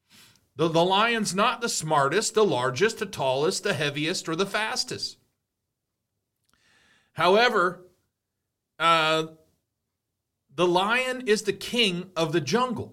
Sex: male